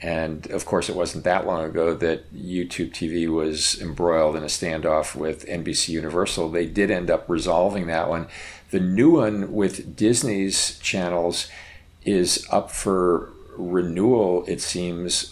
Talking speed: 150 wpm